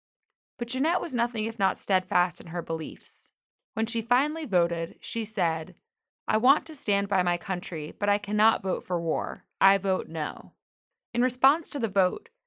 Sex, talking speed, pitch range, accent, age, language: female, 180 wpm, 185-240 Hz, American, 20-39, English